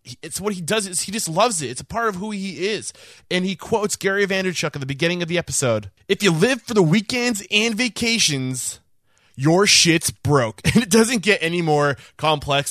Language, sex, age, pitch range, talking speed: English, male, 20-39, 120-175 Hz, 210 wpm